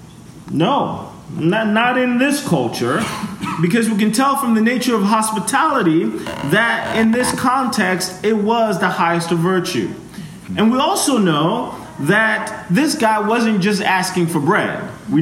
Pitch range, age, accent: 175-225 Hz, 30-49, American